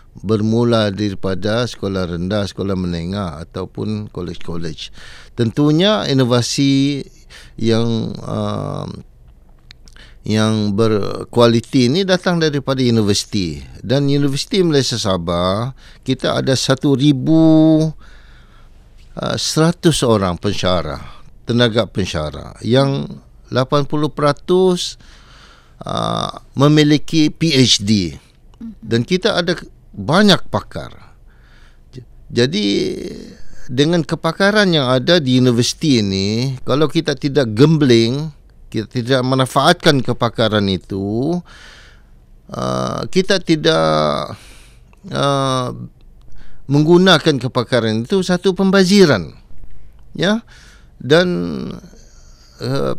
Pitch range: 100-150 Hz